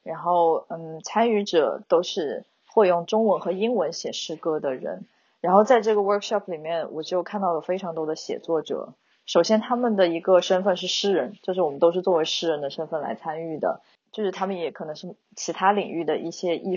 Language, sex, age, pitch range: Chinese, female, 20-39, 160-195 Hz